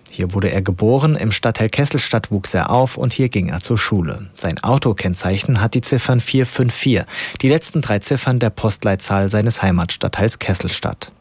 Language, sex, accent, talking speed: German, male, German, 165 wpm